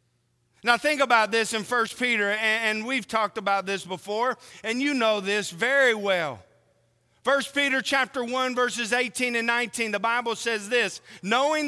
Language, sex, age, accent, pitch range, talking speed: English, male, 40-59, American, 185-265 Hz, 165 wpm